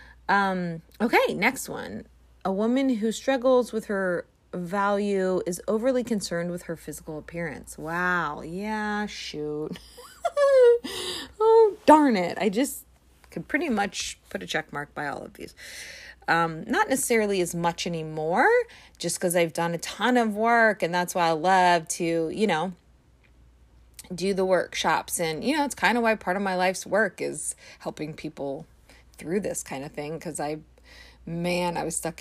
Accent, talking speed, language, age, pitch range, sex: American, 165 wpm, English, 30-49, 160-225 Hz, female